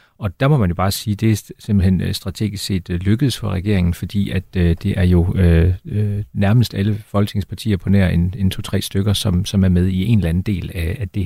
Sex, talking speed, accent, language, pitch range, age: male, 220 wpm, native, Danish, 95-105 Hz, 40-59